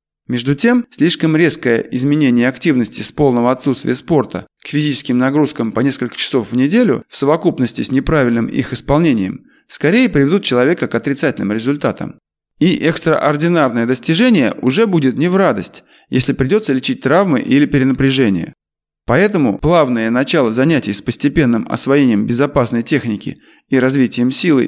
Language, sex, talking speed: Russian, male, 135 wpm